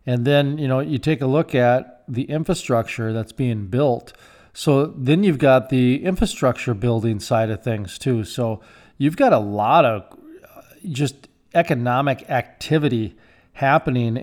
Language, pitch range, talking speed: English, 120-145 Hz, 150 wpm